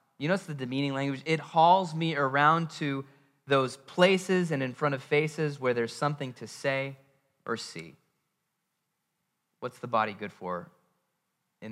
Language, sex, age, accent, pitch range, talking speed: English, male, 20-39, American, 115-145 Hz, 155 wpm